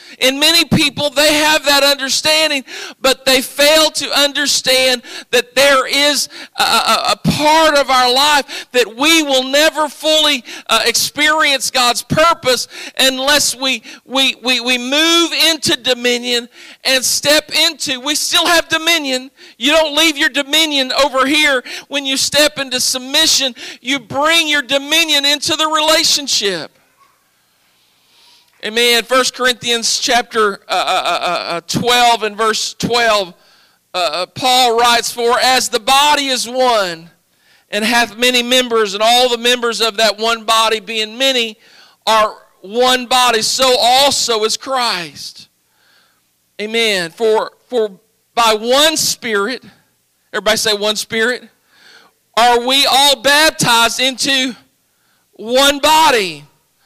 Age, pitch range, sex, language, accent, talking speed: 50-69, 235-295 Hz, male, English, American, 130 wpm